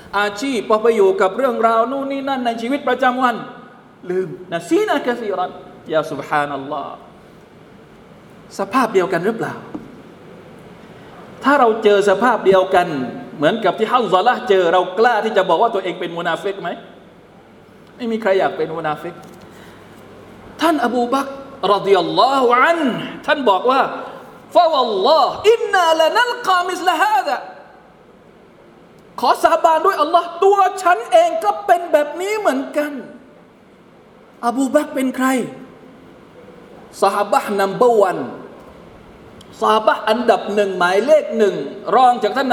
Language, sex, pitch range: Thai, male, 200-295 Hz